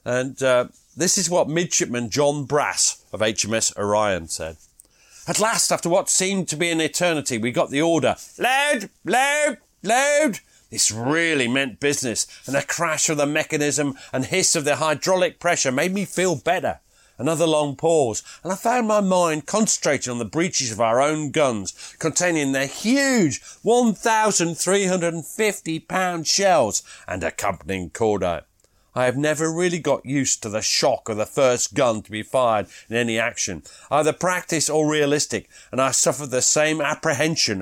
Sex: male